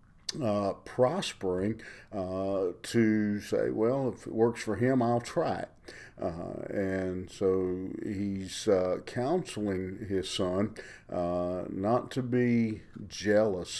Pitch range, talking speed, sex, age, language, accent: 90-110 Hz, 115 wpm, male, 50-69, English, American